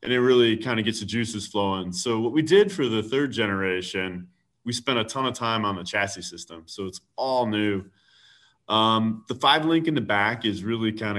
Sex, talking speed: male, 220 wpm